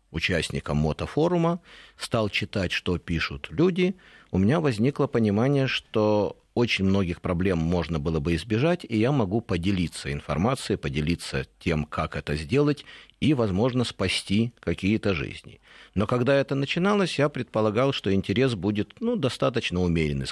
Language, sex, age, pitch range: Russian, male, 50-69, 85-125 Hz